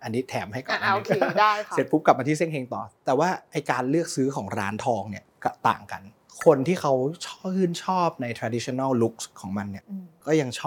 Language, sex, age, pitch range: Thai, male, 30-49, 115-145 Hz